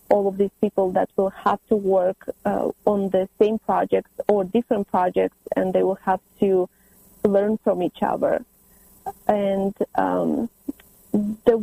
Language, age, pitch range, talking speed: English, 30-49, 195-220 Hz, 150 wpm